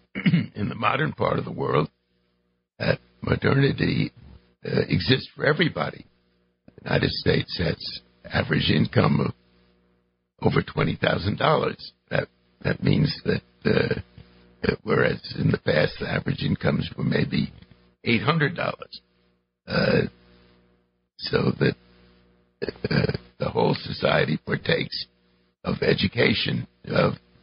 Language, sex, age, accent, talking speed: English, male, 60-79, American, 105 wpm